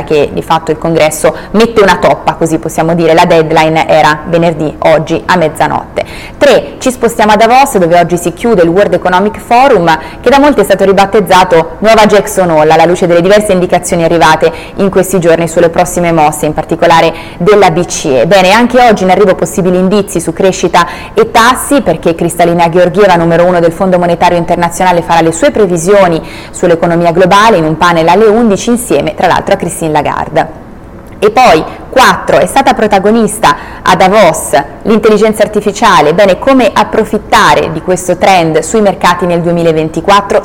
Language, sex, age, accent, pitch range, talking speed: Italian, female, 20-39, native, 165-210 Hz, 170 wpm